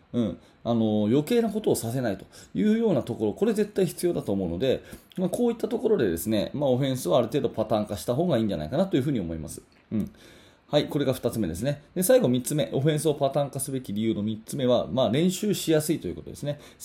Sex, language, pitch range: male, Japanese, 110-155 Hz